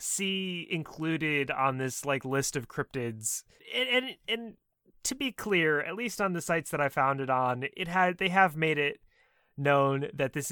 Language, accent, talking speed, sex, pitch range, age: English, American, 190 wpm, male, 120-175 Hz, 30-49